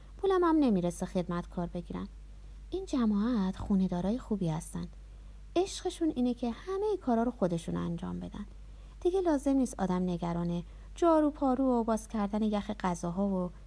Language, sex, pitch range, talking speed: Persian, female, 180-275 Hz, 155 wpm